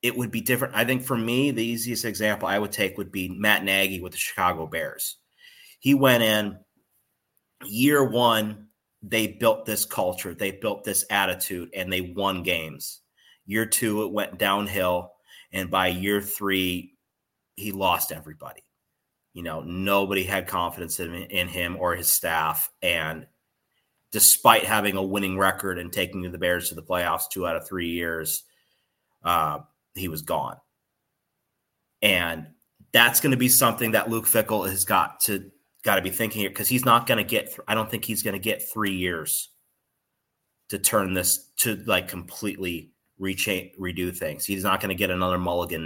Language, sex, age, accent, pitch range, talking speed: English, male, 30-49, American, 90-105 Hz, 175 wpm